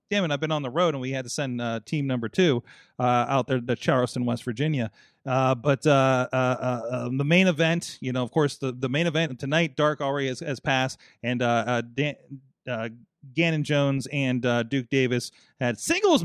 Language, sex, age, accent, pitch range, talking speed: English, male, 30-49, American, 125-175 Hz, 210 wpm